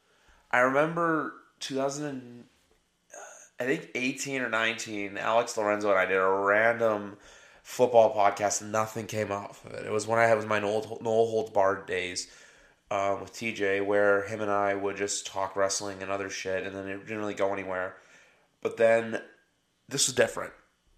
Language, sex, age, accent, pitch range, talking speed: English, male, 20-39, American, 100-115 Hz, 175 wpm